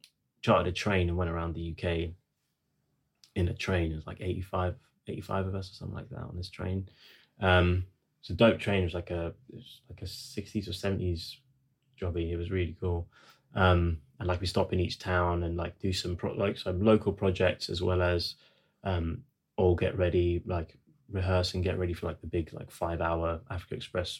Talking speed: 210 wpm